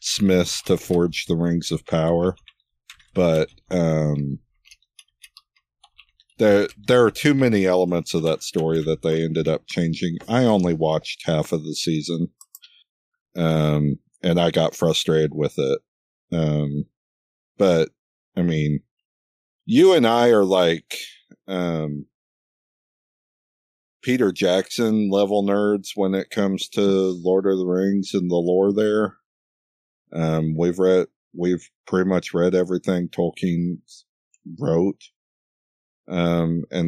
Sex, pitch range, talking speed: male, 80-100 Hz, 120 wpm